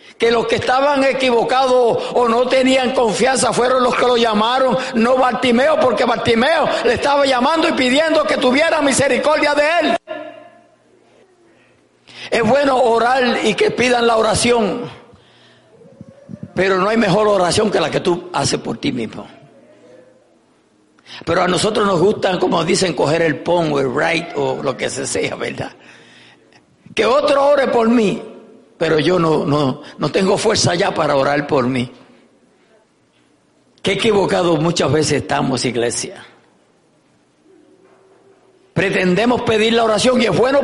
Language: English